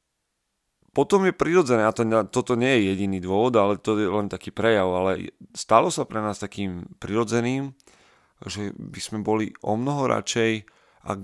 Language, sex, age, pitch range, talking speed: Slovak, male, 30-49, 95-110 Hz, 160 wpm